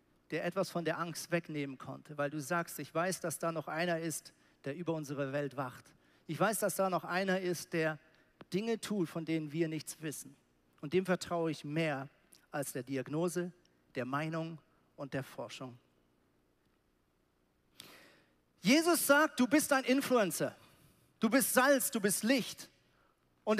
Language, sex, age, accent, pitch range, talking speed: German, male, 50-69, German, 155-215 Hz, 160 wpm